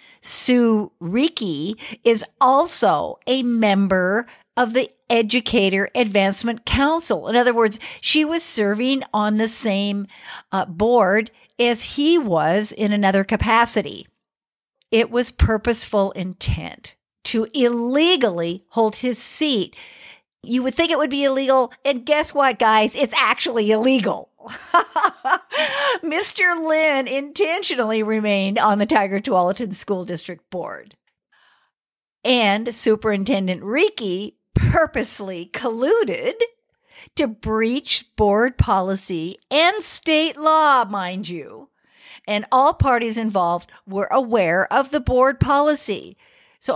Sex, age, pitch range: female, 50-69, 210-285 Hz